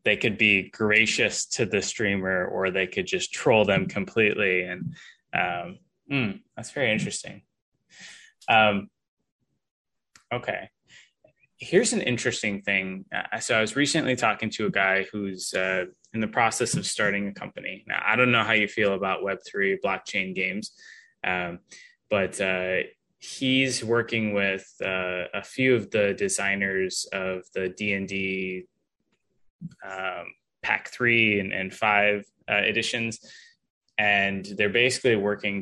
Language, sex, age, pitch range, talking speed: English, male, 10-29, 95-120 Hz, 140 wpm